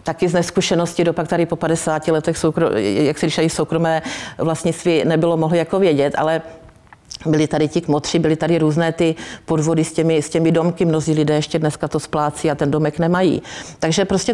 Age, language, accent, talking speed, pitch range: 50-69, Czech, native, 190 wpm, 155-180 Hz